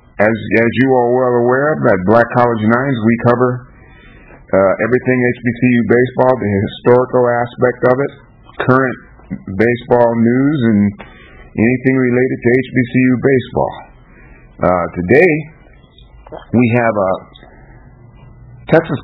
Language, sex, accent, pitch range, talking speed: English, male, American, 105-125 Hz, 115 wpm